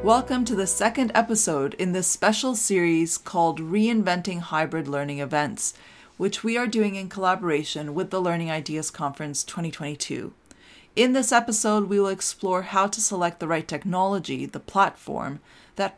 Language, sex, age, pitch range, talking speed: English, female, 30-49, 160-210 Hz, 155 wpm